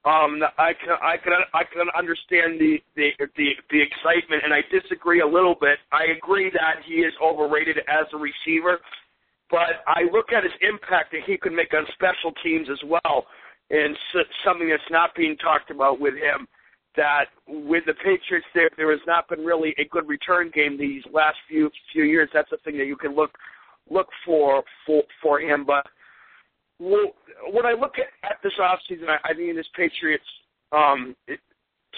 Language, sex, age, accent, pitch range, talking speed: English, male, 50-69, American, 145-170 Hz, 190 wpm